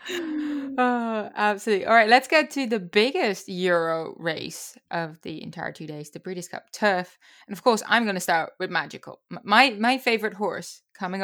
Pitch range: 170-215 Hz